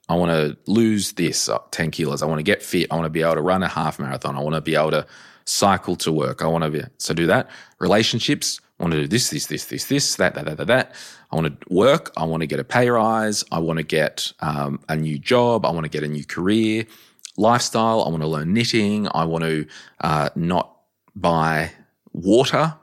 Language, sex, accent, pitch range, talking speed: English, male, Australian, 80-110 Hz, 235 wpm